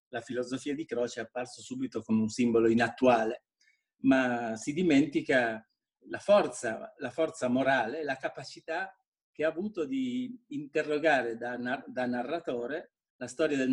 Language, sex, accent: Italian, male, native